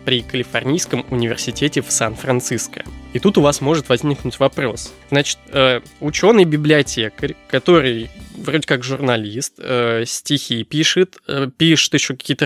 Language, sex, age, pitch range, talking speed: Russian, male, 20-39, 120-155 Hz, 115 wpm